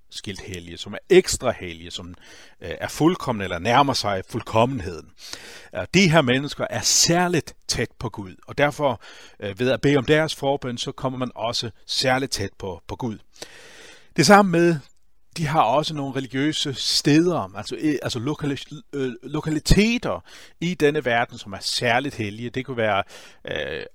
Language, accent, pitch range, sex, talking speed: Danish, native, 105-140 Hz, male, 150 wpm